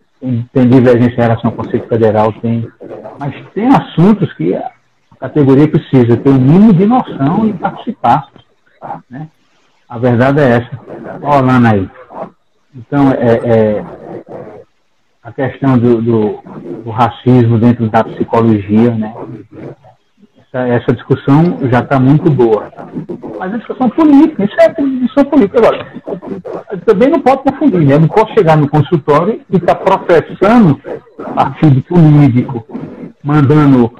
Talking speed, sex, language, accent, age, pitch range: 140 wpm, male, Portuguese, Brazilian, 60-79, 120-200 Hz